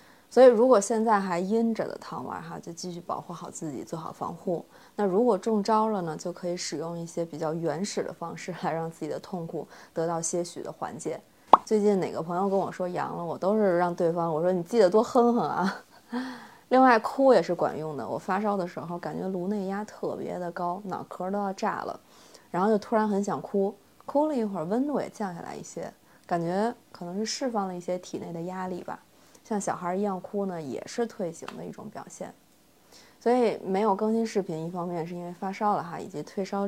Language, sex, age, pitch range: Chinese, female, 20-39, 175-220 Hz